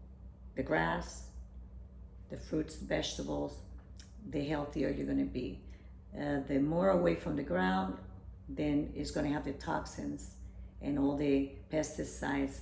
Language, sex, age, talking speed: English, female, 50-69, 130 wpm